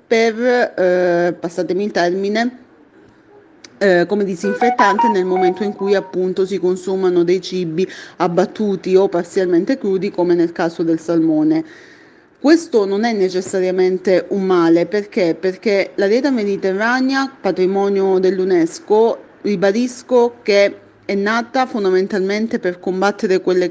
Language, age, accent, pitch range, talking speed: Italian, 30-49, native, 180-205 Hz, 120 wpm